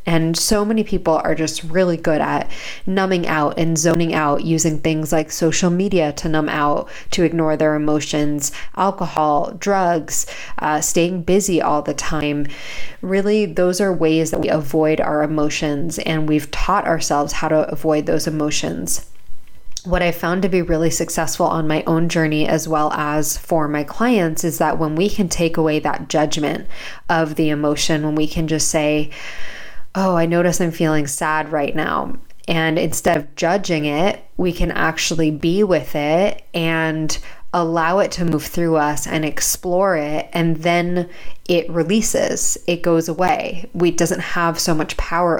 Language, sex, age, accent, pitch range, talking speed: English, female, 20-39, American, 155-175 Hz, 170 wpm